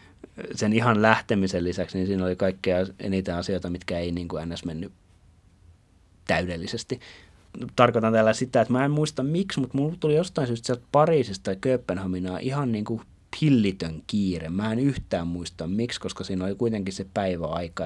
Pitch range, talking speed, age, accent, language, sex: 90-115 Hz, 160 wpm, 30-49, native, Finnish, male